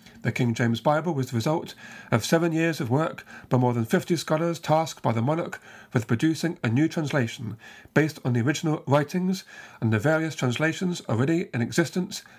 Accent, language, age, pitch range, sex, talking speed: British, English, 40-59, 125-170 Hz, male, 185 wpm